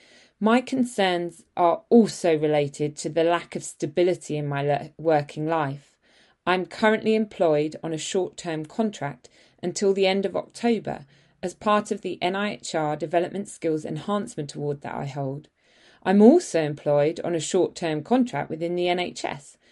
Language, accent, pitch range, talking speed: English, British, 155-205 Hz, 145 wpm